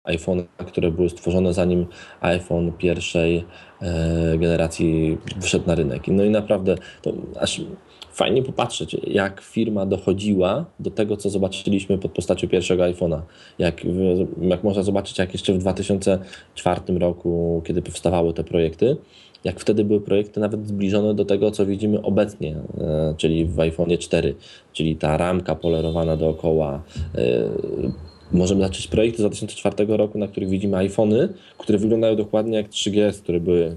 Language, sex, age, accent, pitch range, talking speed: Polish, male, 20-39, native, 85-105 Hz, 145 wpm